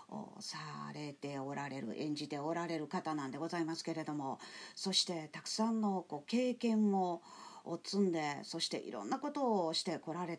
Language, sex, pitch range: Japanese, female, 165-230 Hz